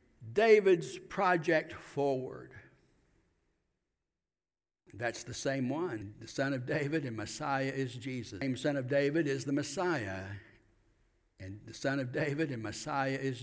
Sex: male